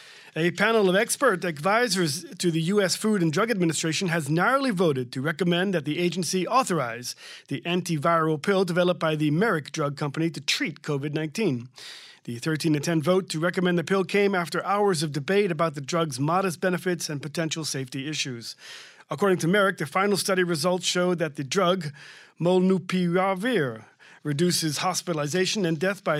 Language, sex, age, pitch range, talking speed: English, male, 40-59, 155-195 Hz, 165 wpm